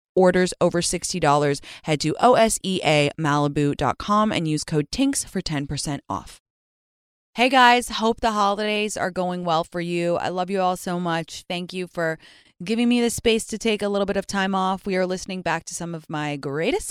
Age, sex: 20-39, female